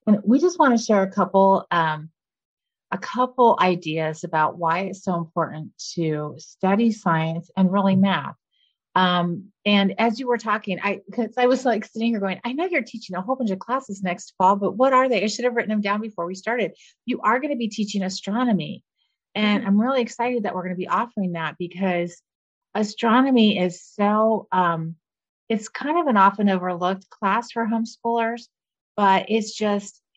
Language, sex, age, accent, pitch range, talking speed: English, female, 30-49, American, 165-215 Hz, 190 wpm